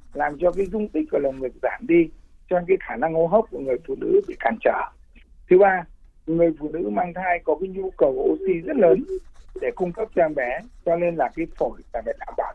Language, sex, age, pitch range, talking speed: Vietnamese, male, 60-79, 155-220 Hz, 245 wpm